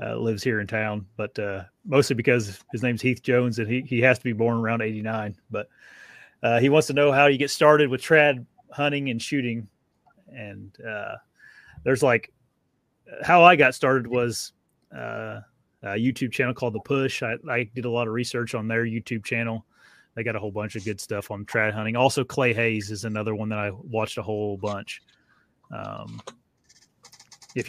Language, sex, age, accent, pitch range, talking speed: English, male, 30-49, American, 105-125 Hz, 195 wpm